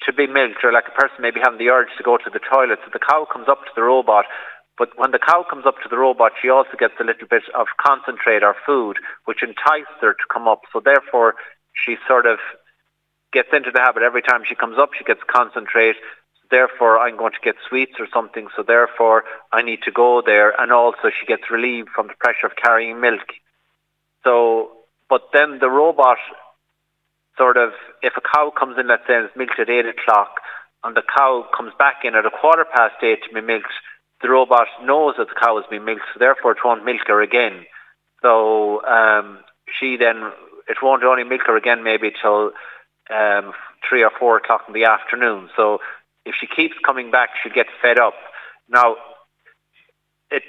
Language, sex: English, male